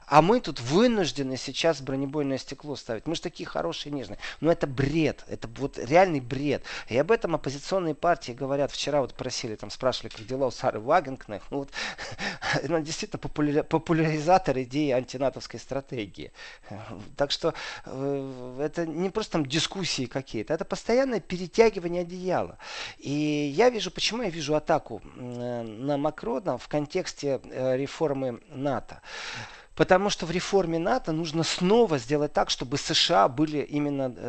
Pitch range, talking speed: 130-165 Hz, 140 wpm